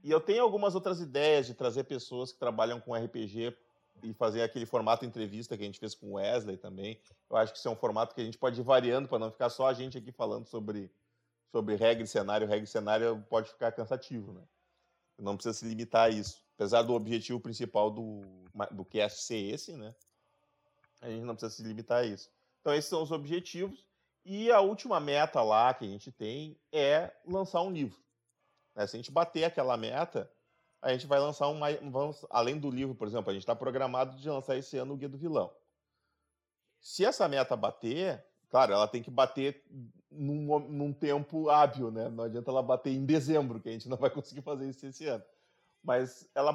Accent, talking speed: Brazilian, 210 wpm